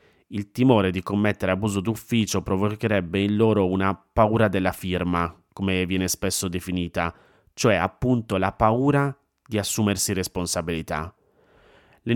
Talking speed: 125 wpm